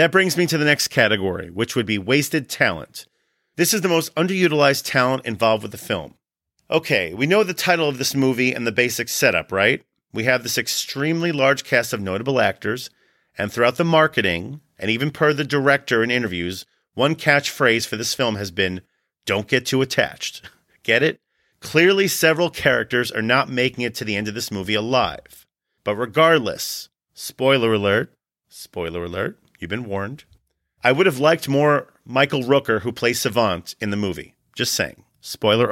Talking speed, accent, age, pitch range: 180 wpm, American, 40-59, 115-150 Hz